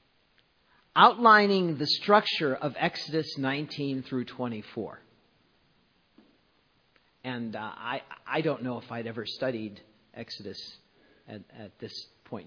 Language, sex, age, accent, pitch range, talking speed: English, male, 50-69, American, 120-155 Hz, 110 wpm